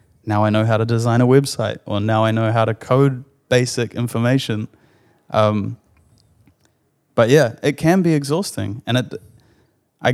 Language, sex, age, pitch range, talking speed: English, male, 20-39, 110-130 Hz, 160 wpm